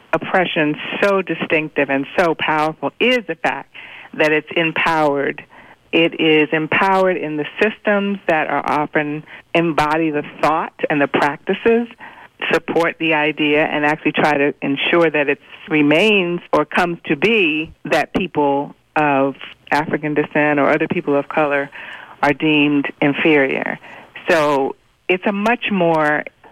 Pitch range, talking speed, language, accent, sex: 145-175 Hz, 135 wpm, English, American, female